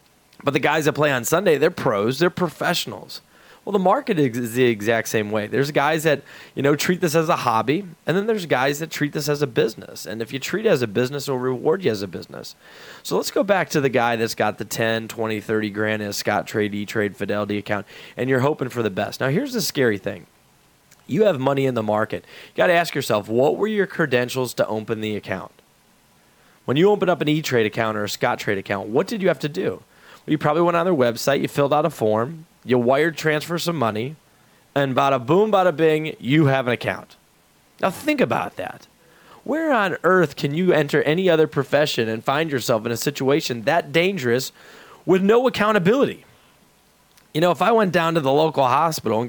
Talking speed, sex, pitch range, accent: 225 wpm, male, 115-175 Hz, American